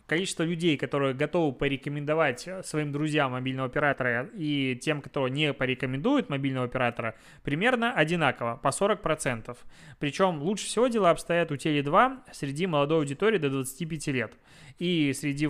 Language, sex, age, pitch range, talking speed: Russian, male, 20-39, 135-170 Hz, 140 wpm